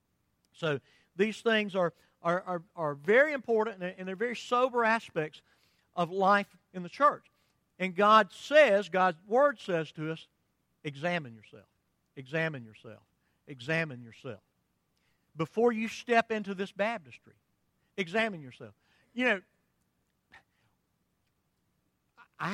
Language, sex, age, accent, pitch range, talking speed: English, male, 50-69, American, 135-210 Hz, 115 wpm